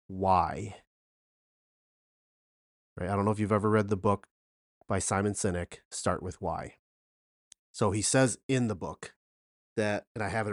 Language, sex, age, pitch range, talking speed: English, male, 30-49, 95-120 Hz, 160 wpm